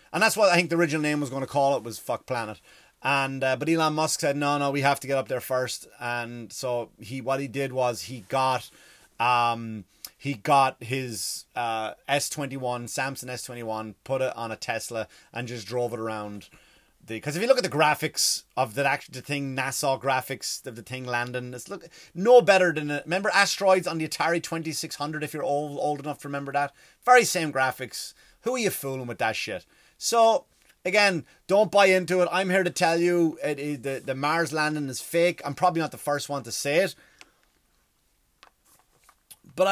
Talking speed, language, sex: 215 wpm, English, male